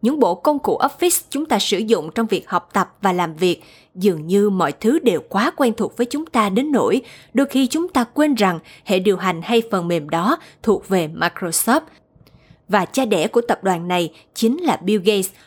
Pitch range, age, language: 190-255 Hz, 20-39, Vietnamese